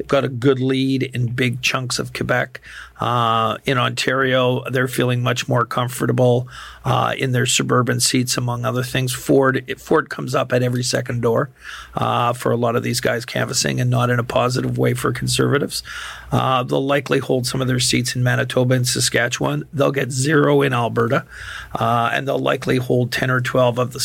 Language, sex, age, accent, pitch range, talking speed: English, male, 50-69, American, 125-135 Hz, 190 wpm